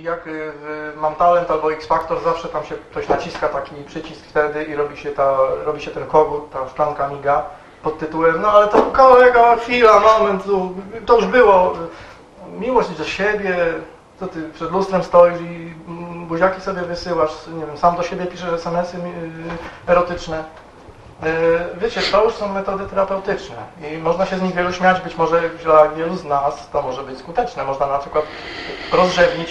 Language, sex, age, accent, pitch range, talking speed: Polish, male, 30-49, native, 150-180 Hz, 170 wpm